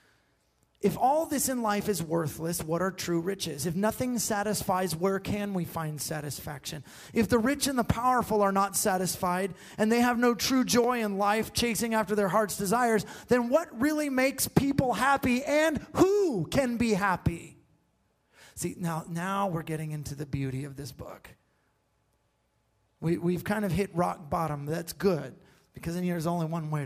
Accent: American